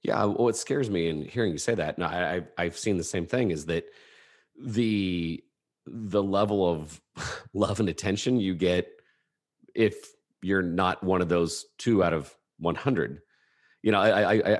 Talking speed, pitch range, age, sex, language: 175 wpm, 85-105 Hz, 40-59, male, English